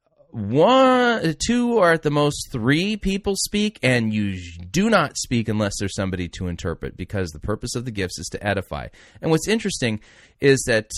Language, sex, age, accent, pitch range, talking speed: English, male, 30-49, American, 90-125 Hz, 180 wpm